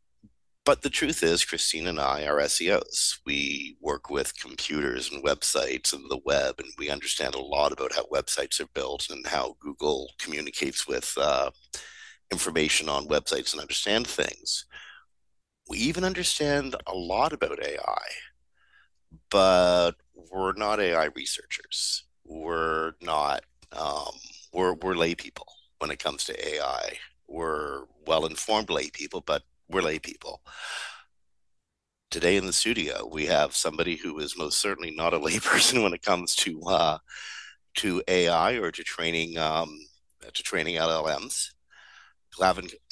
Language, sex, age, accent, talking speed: English, male, 50-69, American, 145 wpm